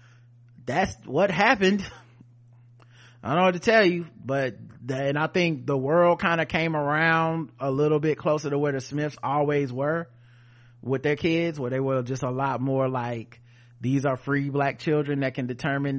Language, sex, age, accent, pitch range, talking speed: English, male, 30-49, American, 120-150 Hz, 185 wpm